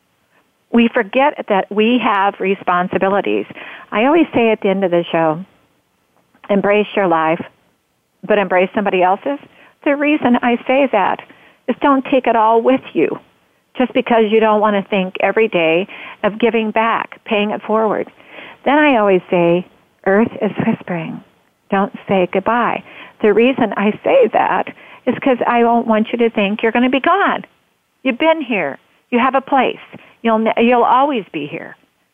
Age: 50-69